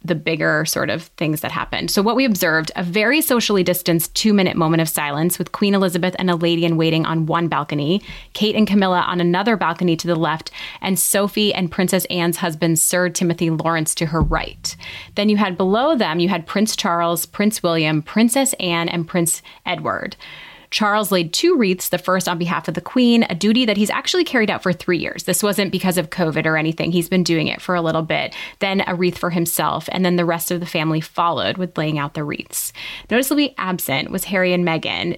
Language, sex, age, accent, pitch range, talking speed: English, female, 20-39, American, 170-200 Hz, 215 wpm